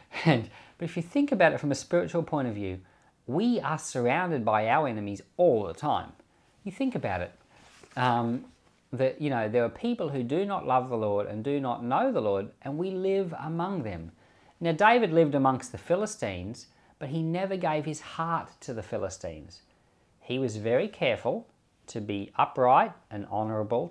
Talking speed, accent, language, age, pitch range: 185 wpm, Australian, English, 40-59, 105-160 Hz